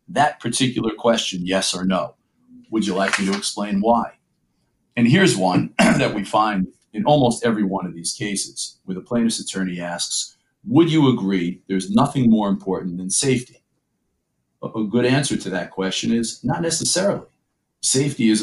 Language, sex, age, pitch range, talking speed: English, male, 50-69, 95-130 Hz, 165 wpm